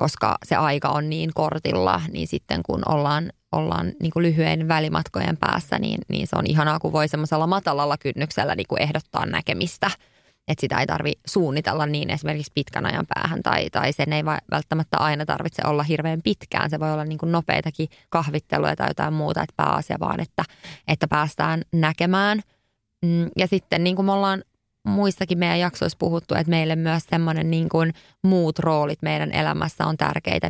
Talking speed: 170 wpm